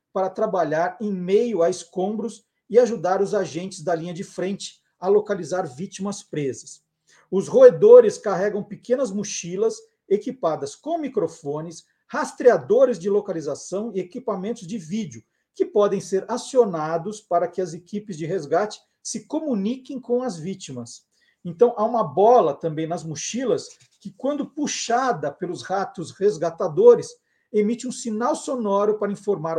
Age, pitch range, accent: 40-59, 175-240 Hz, Brazilian